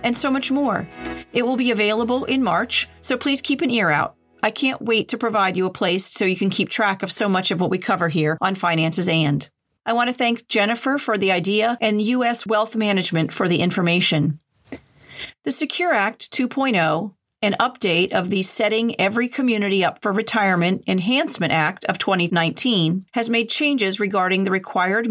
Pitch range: 185-235 Hz